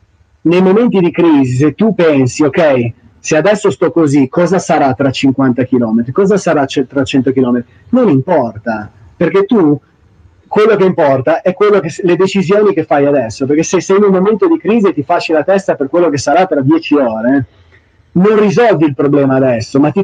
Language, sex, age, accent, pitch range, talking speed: Italian, male, 30-49, native, 140-185 Hz, 200 wpm